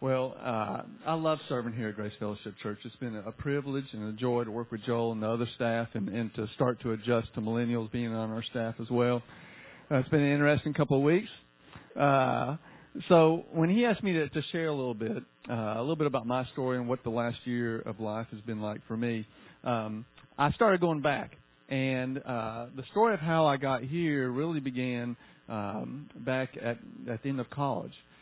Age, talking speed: 50-69, 215 wpm